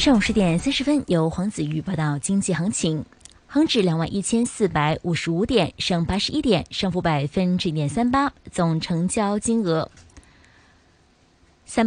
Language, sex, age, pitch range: Chinese, female, 20-39, 165-230 Hz